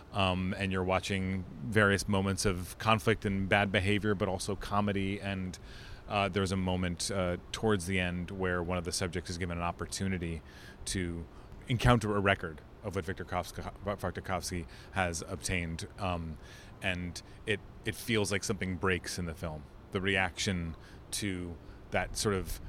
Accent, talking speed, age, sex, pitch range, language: American, 155 wpm, 30-49, male, 95-105 Hz, English